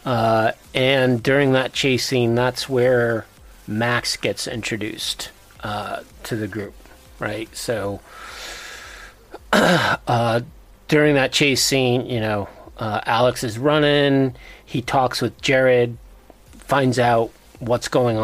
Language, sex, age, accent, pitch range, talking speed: English, male, 40-59, American, 105-125 Hz, 120 wpm